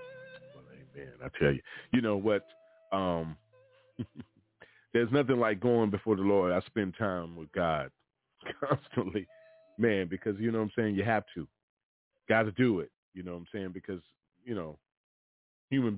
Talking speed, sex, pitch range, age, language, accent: 170 wpm, male, 90-115 Hz, 40-59, English, American